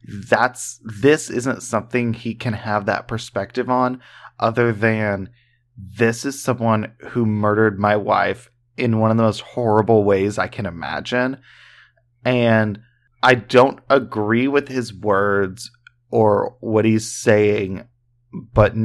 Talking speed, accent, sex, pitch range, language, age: 130 wpm, American, male, 105-125 Hz, English, 30-49